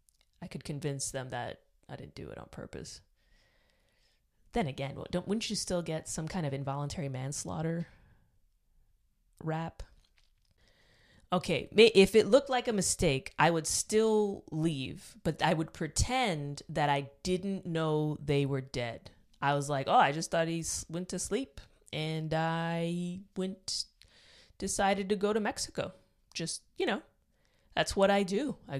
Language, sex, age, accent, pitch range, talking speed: English, female, 20-39, American, 140-185 Hz, 150 wpm